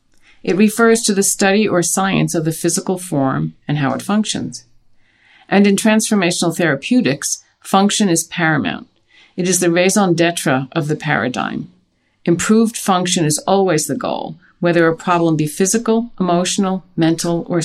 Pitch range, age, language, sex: 145-185 Hz, 50-69, English, female